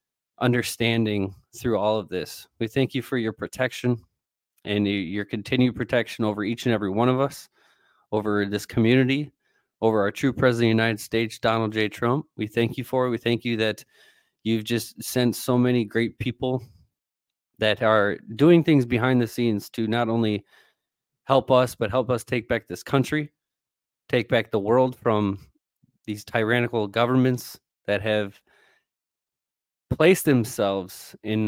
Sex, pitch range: male, 105-130 Hz